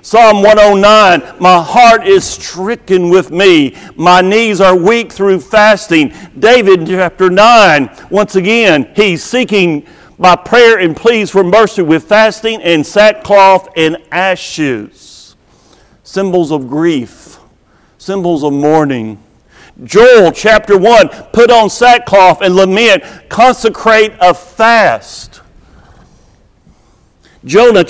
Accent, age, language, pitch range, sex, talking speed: American, 50-69, English, 160-215 Hz, male, 110 wpm